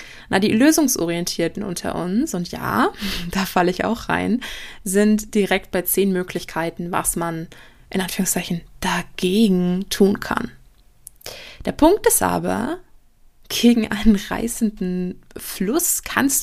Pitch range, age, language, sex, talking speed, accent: 180-220 Hz, 20-39, German, female, 120 wpm, German